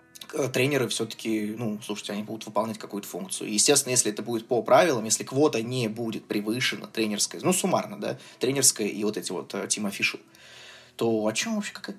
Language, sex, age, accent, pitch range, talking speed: Russian, male, 20-39, native, 110-150 Hz, 175 wpm